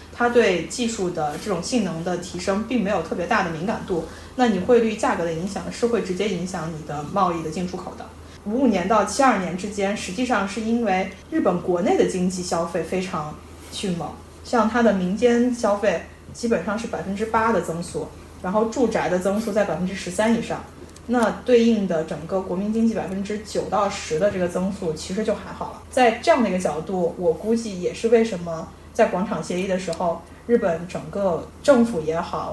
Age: 20-39